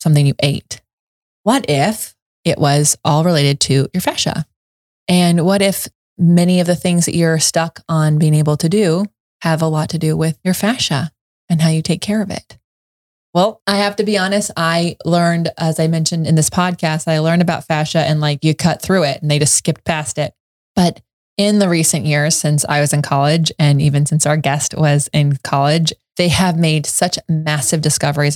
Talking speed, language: 205 wpm, English